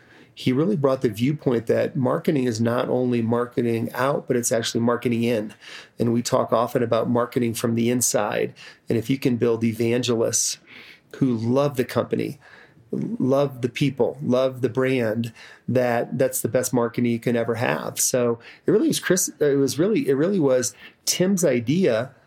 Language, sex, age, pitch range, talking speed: English, male, 30-49, 120-140 Hz, 170 wpm